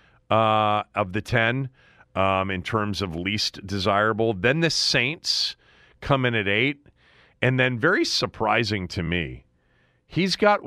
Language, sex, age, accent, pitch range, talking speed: English, male, 40-59, American, 90-125 Hz, 140 wpm